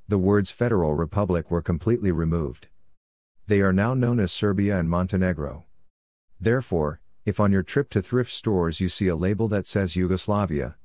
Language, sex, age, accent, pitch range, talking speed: English, male, 50-69, American, 85-105 Hz, 165 wpm